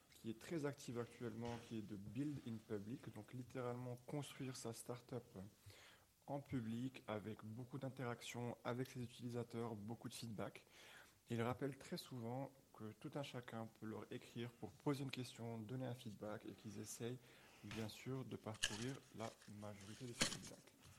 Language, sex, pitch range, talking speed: English, male, 110-125 Hz, 160 wpm